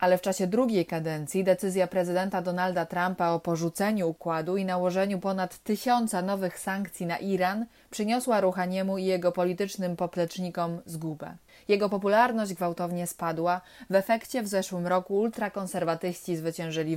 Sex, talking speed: female, 135 wpm